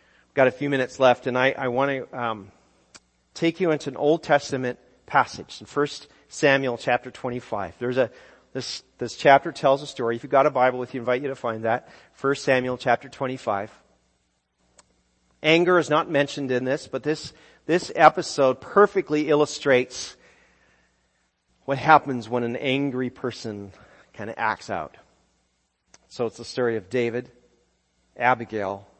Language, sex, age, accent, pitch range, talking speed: English, male, 40-59, American, 115-140 Hz, 155 wpm